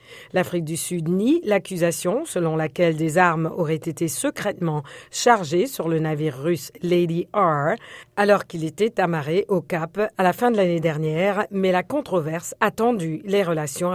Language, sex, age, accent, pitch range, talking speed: French, female, 50-69, French, 165-200 Hz, 165 wpm